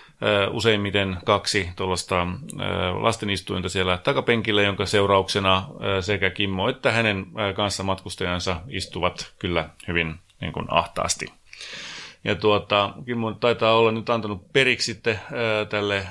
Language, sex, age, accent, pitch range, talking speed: Finnish, male, 30-49, native, 95-110 Hz, 105 wpm